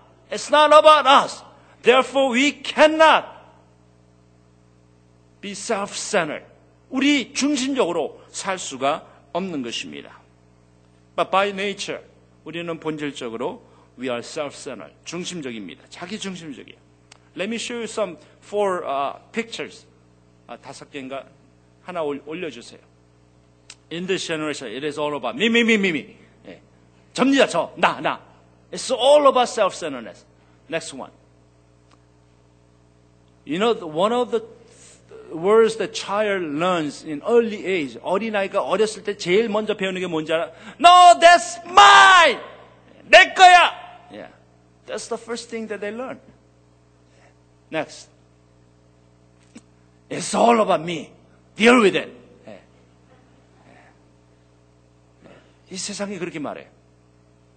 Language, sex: Korean, male